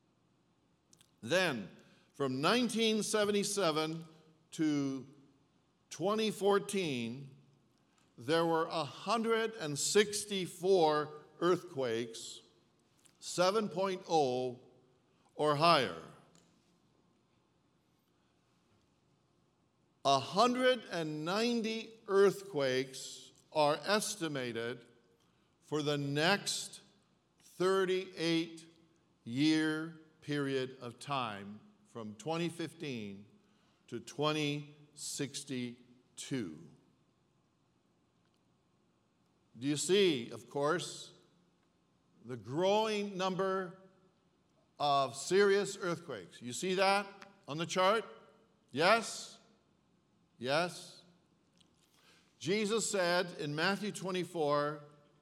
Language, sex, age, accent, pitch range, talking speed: English, male, 60-79, American, 135-190 Hz, 55 wpm